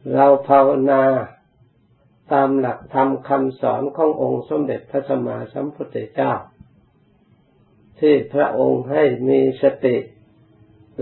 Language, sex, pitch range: Thai, male, 115-140 Hz